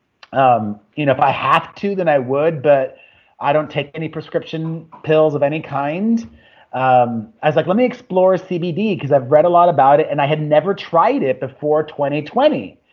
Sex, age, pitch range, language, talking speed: male, 30-49, 145-205 Hz, English, 200 wpm